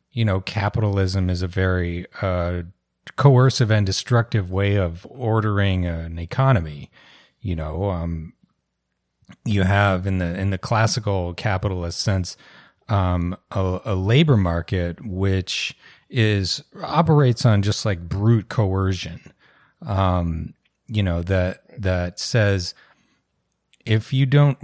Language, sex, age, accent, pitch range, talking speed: English, male, 30-49, American, 90-115 Hz, 120 wpm